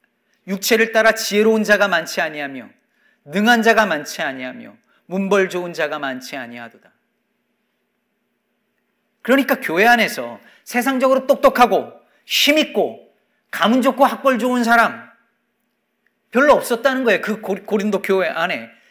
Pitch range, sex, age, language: 190-235 Hz, male, 40-59, Korean